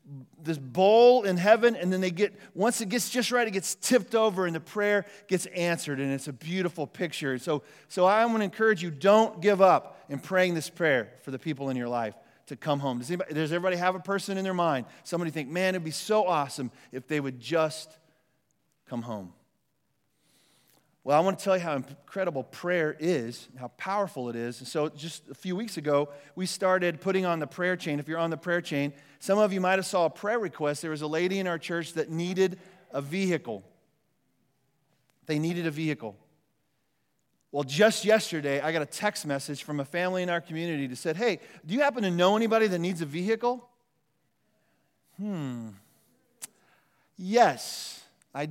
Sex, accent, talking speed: male, American, 200 wpm